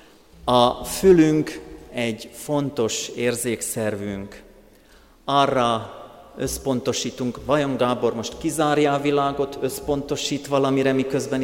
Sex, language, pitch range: male, Hungarian, 115-140 Hz